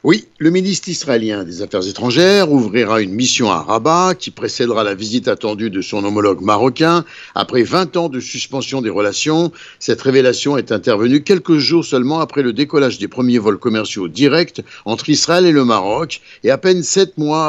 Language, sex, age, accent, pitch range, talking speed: Italian, male, 60-79, French, 120-160 Hz, 180 wpm